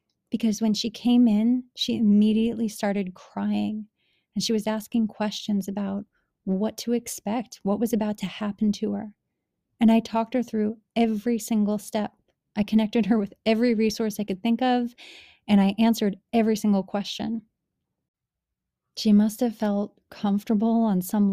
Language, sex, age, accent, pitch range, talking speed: English, female, 30-49, American, 200-225 Hz, 160 wpm